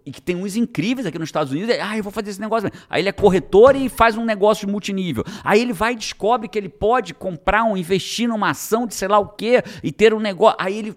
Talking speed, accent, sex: 275 wpm, Brazilian, male